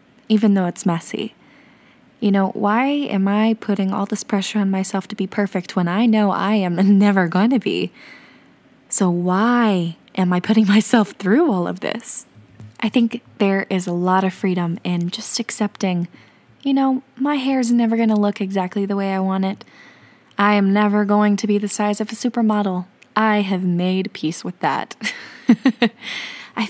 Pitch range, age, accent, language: 195-235 Hz, 10-29, American, English